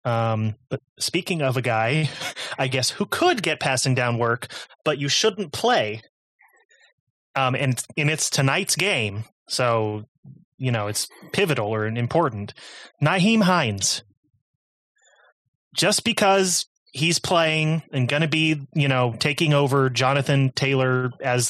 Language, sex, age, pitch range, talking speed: English, male, 30-49, 125-160 Hz, 135 wpm